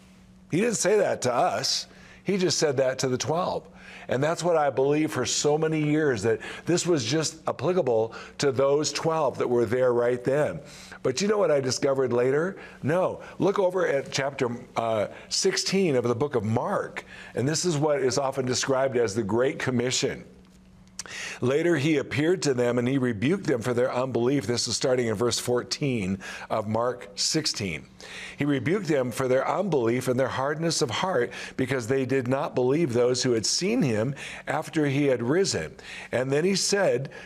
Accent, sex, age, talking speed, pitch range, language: American, male, 50-69, 185 wpm, 120-155 Hz, English